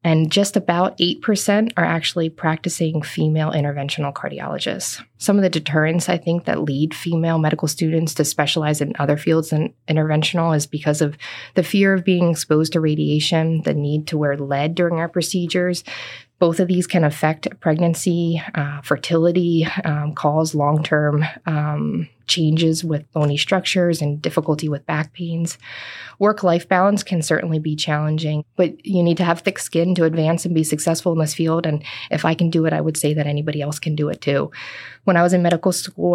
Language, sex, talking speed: English, female, 185 wpm